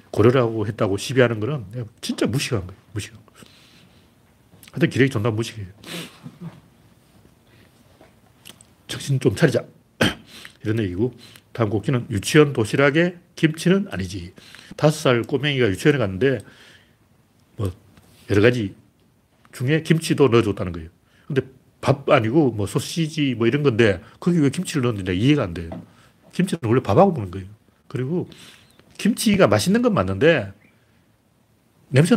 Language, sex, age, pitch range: Korean, male, 40-59, 110-155 Hz